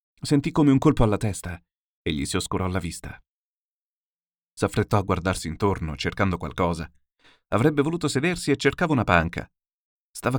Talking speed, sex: 150 wpm, male